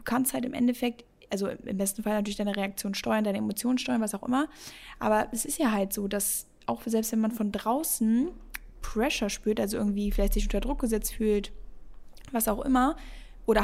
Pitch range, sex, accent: 205-235 Hz, female, German